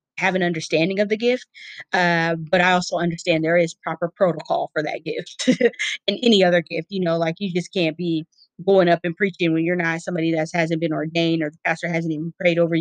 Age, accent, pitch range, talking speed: 20-39, American, 165-185 Hz, 225 wpm